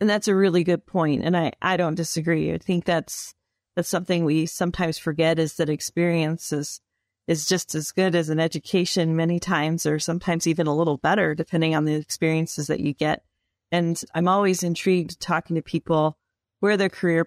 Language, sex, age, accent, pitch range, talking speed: English, female, 30-49, American, 155-180 Hz, 190 wpm